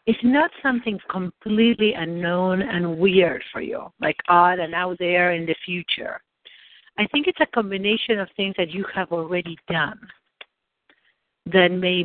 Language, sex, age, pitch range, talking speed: English, female, 60-79, 175-230 Hz, 155 wpm